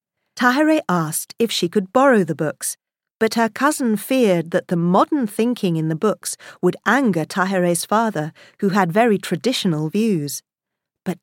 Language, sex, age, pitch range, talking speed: English, female, 40-59, 175-255 Hz, 155 wpm